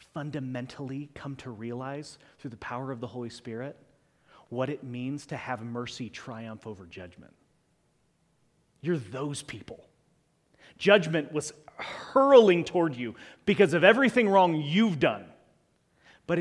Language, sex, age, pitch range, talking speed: English, male, 30-49, 130-175 Hz, 130 wpm